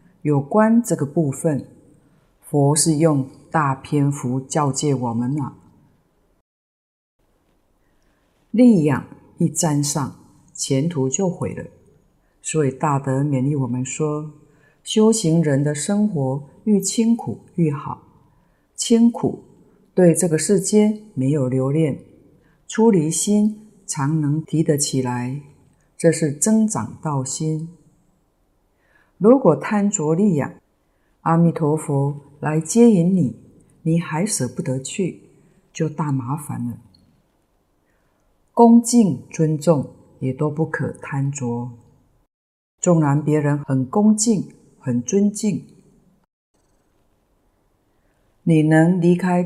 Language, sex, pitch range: Chinese, female, 140-185 Hz